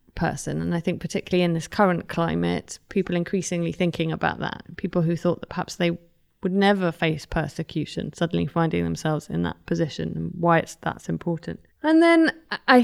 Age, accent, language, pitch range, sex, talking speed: 20-39, British, English, 165-195 Hz, female, 180 wpm